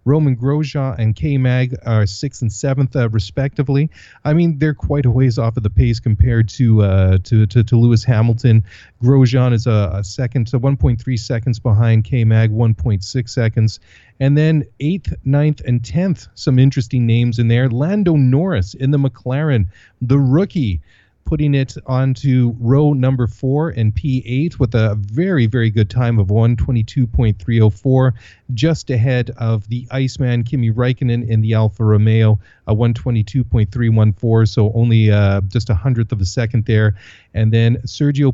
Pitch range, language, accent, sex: 110-130 Hz, English, American, male